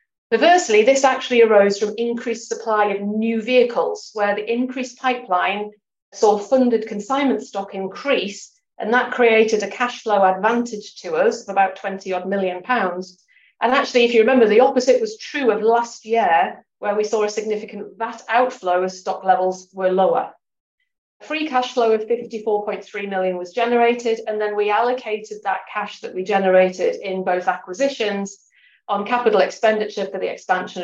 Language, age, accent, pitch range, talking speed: English, 40-59, British, 190-235 Hz, 160 wpm